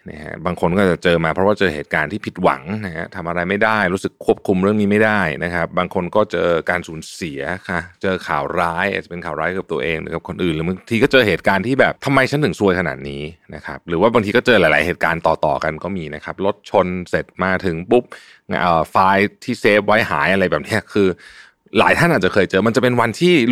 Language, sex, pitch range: Thai, male, 90-125 Hz